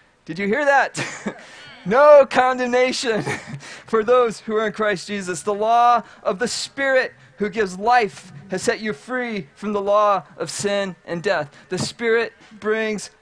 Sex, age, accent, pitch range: male, 40-59, American, 190-225 Hz